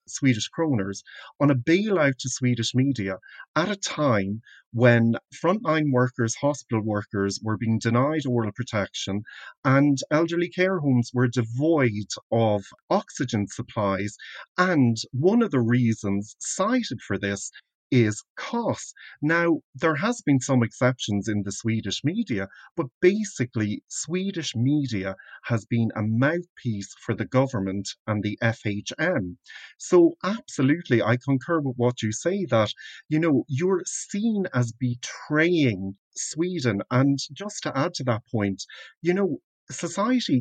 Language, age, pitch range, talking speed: English, 40-59, 110-155 Hz, 135 wpm